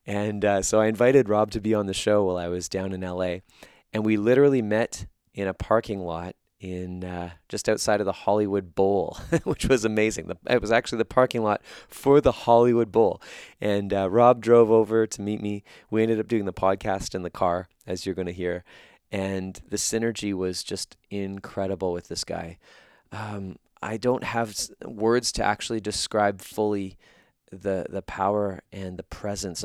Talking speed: 190 wpm